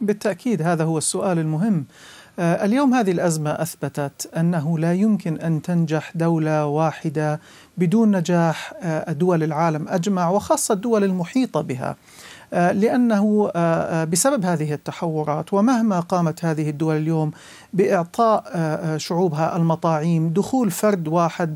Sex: male